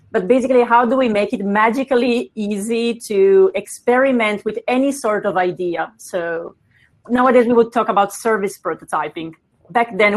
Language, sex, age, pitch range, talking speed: English, female, 30-49, 185-225 Hz, 155 wpm